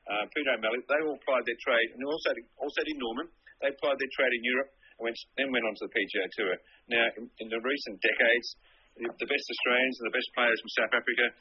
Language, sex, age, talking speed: English, male, 40-59, 230 wpm